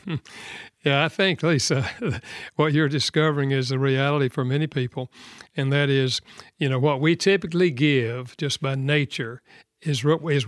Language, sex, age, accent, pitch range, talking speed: English, male, 60-79, American, 130-155 Hz, 155 wpm